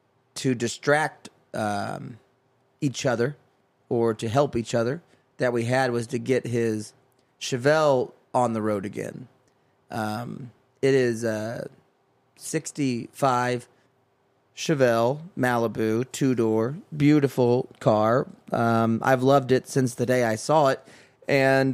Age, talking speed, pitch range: 30-49, 120 wpm, 115-135 Hz